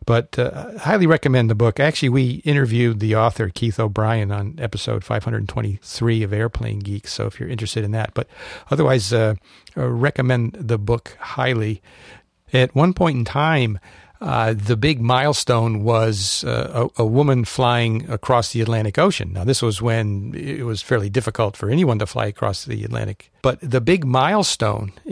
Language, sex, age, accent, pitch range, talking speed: English, male, 50-69, American, 110-135 Hz, 170 wpm